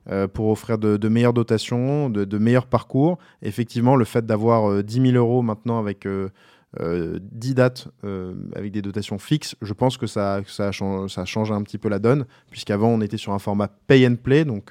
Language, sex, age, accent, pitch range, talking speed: French, male, 20-39, French, 100-125 Hz, 200 wpm